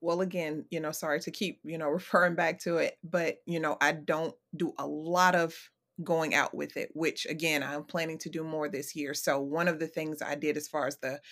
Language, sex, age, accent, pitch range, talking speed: English, female, 30-49, American, 150-170 Hz, 245 wpm